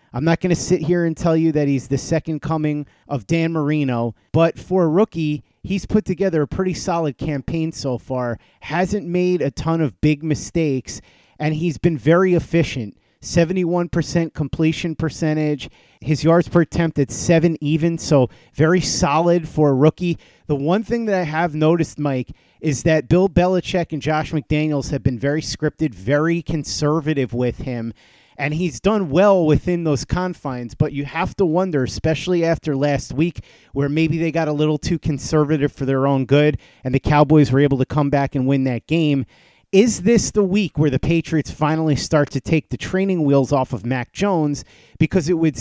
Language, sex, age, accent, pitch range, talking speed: English, male, 30-49, American, 140-170 Hz, 185 wpm